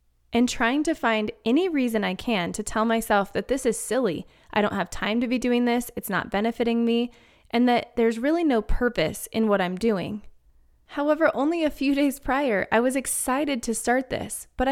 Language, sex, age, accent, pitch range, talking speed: English, female, 20-39, American, 195-255 Hz, 205 wpm